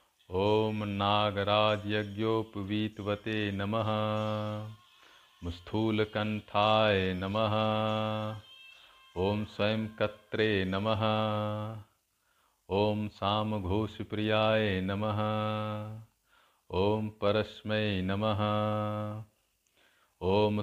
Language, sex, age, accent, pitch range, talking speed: Hindi, male, 50-69, native, 105-110 Hz, 45 wpm